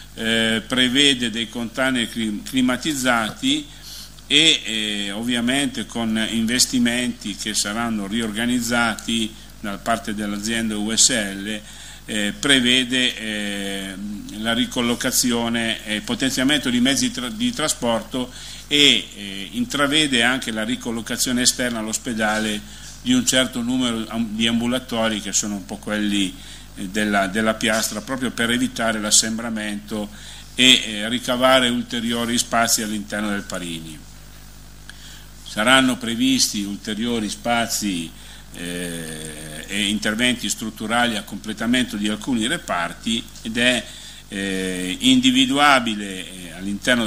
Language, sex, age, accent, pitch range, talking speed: Italian, male, 50-69, native, 105-125 Hz, 105 wpm